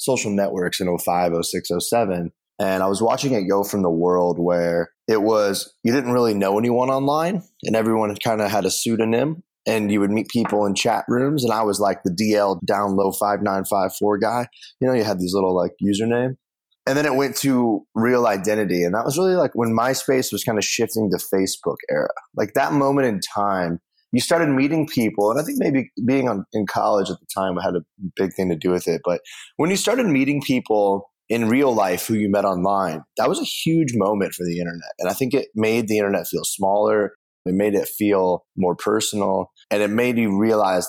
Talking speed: 220 wpm